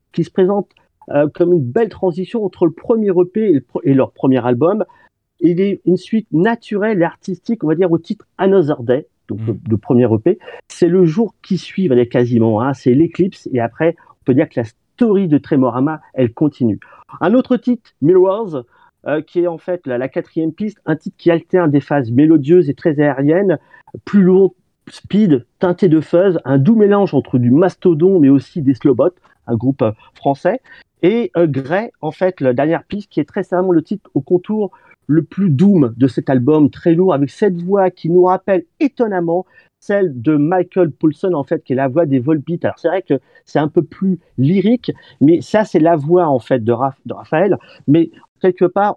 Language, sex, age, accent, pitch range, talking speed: French, male, 40-59, French, 145-190 Hz, 205 wpm